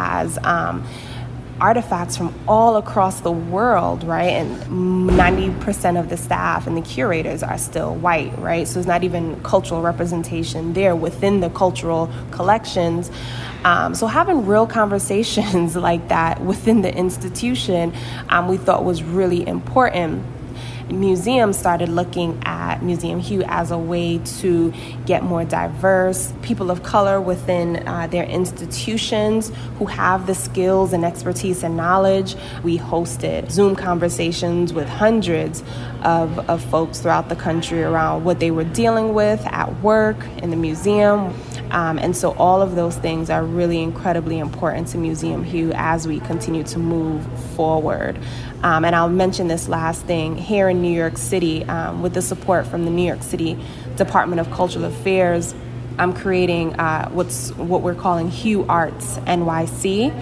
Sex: female